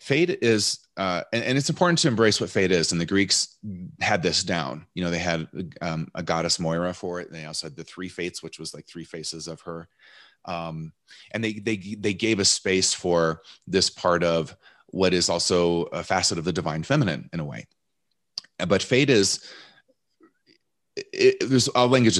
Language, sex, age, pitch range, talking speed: English, male, 30-49, 80-105 Hz, 190 wpm